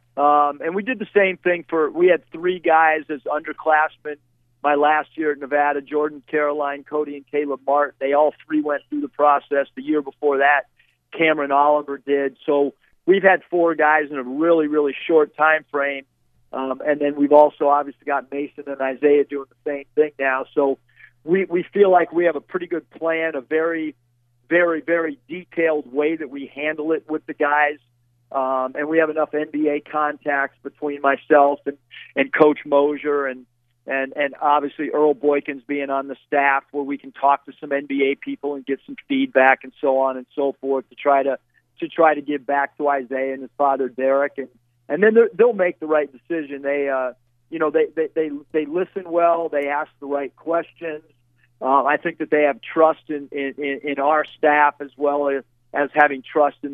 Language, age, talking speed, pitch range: English, 50-69, 200 wpm, 135-155 Hz